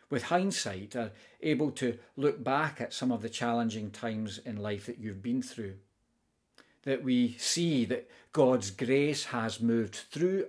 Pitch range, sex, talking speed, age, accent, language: 115-145 Hz, male, 160 wpm, 40-59, British, English